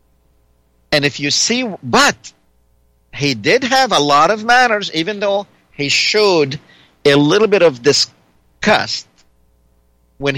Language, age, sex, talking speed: English, 50-69, male, 125 wpm